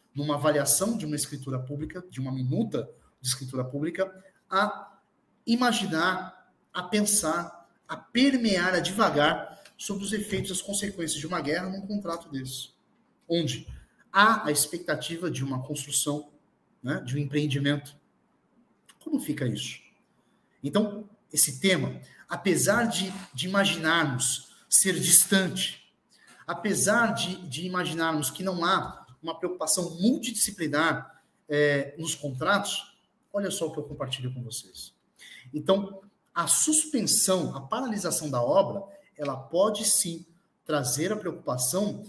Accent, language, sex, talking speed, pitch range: Brazilian, Portuguese, male, 125 wpm, 145-200 Hz